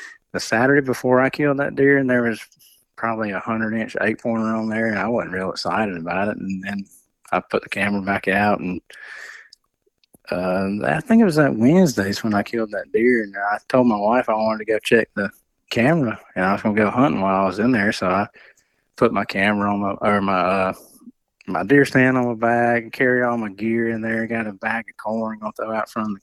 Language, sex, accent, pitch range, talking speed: English, male, American, 100-120 Hz, 235 wpm